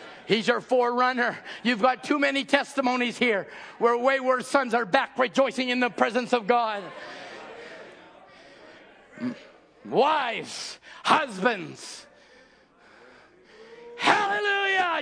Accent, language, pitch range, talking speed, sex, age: American, English, 220-340 Hz, 90 wpm, male, 50-69